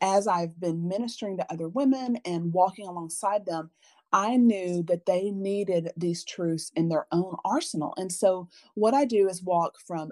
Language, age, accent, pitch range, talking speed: English, 30-49, American, 170-225 Hz, 180 wpm